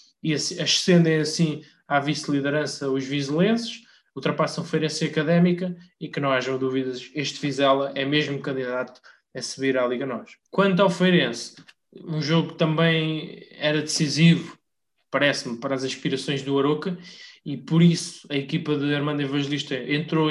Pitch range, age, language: 140-160 Hz, 20-39, Portuguese